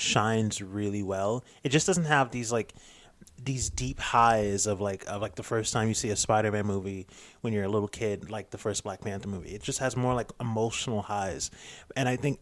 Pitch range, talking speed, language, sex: 105-120 Hz, 220 wpm, English, male